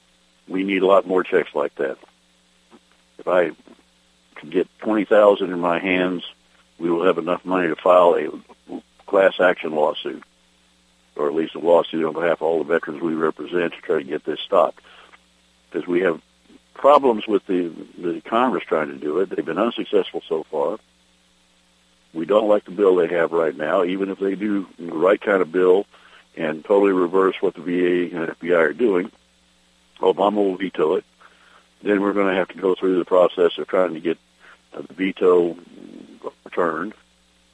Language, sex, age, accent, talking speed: English, male, 60-79, American, 175 wpm